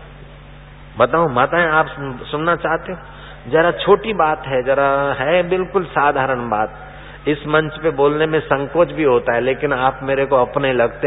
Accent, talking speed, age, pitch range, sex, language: native, 155 wpm, 50-69, 115-145 Hz, male, Hindi